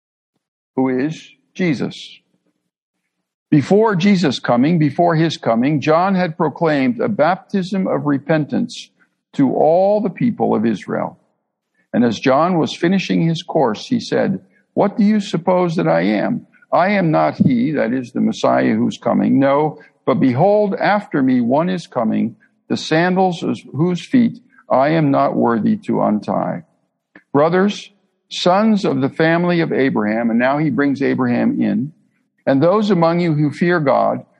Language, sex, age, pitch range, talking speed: English, male, 60-79, 145-205 Hz, 150 wpm